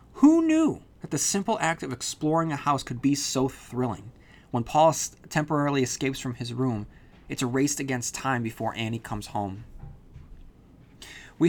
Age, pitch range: 30-49, 120-140 Hz